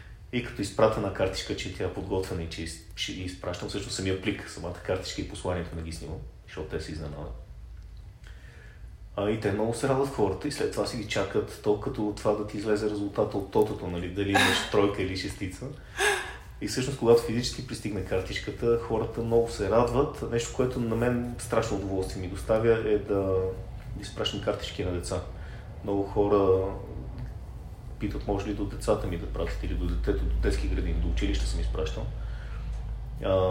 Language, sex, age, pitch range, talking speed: Bulgarian, male, 30-49, 90-105 Hz, 175 wpm